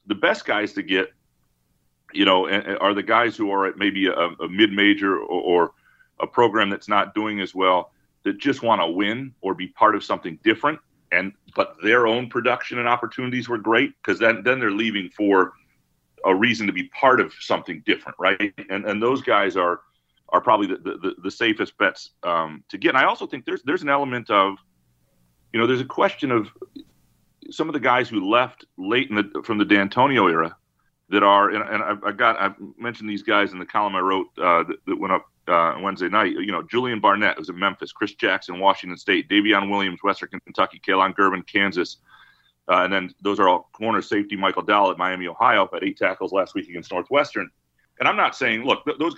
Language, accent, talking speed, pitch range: English, American, 215 wpm, 90-125 Hz